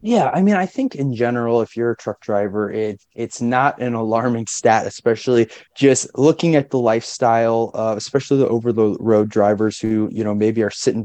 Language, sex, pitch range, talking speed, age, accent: English, male, 115-140 Hz, 200 wpm, 20-39, American